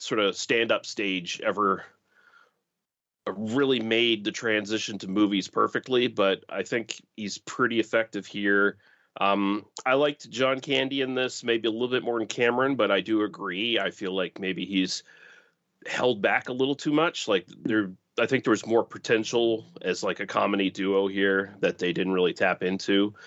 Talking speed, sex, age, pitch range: 180 wpm, male, 30-49, 100-120 Hz